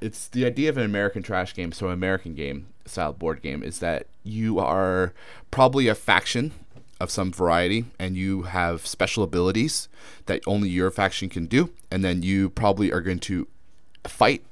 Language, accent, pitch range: English, American, 80-105 Hz